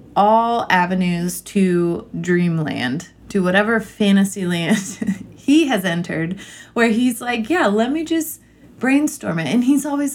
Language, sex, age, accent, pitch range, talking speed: English, female, 20-39, American, 165-215 Hz, 135 wpm